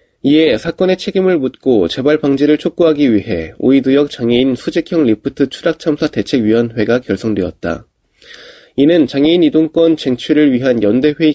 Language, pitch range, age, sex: Korean, 120-165 Hz, 20-39, male